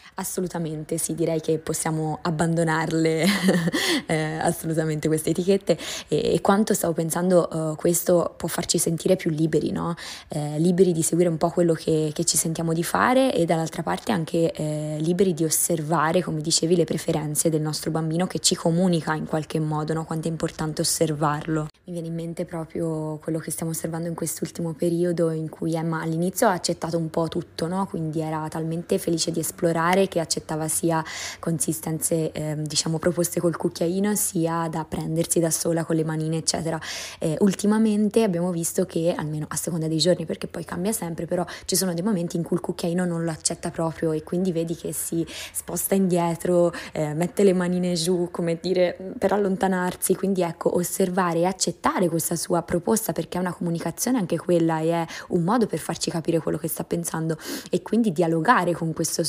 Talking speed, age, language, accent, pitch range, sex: 180 wpm, 20-39, Italian, native, 160-180 Hz, female